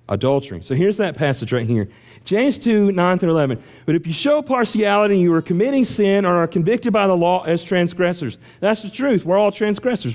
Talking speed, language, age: 200 wpm, English, 40-59